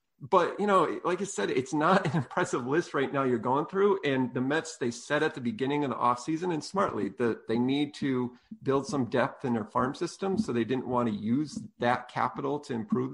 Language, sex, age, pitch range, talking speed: English, male, 40-59, 125-165 Hz, 230 wpm